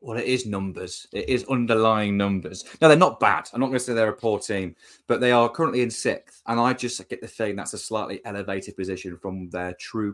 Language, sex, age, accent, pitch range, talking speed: English, male, 20-39, British, 95-115 Hz, 245 wpm